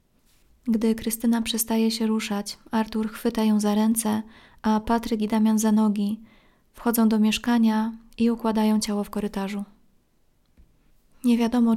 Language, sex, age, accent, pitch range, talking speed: Polish, female, 20-39, native, 210-225 Hz, 135 wpm